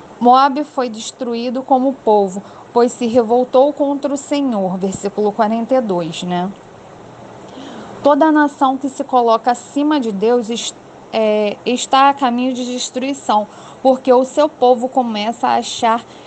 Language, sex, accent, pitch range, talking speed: Portuguese, female, Brazilian, 235-275 Hz, 130 wpm